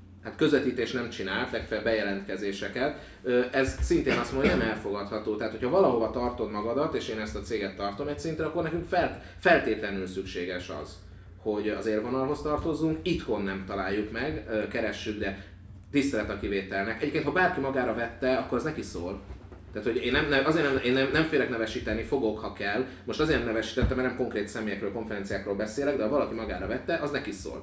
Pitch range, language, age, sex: 100-135 Hz, Hungarian, 30-49, male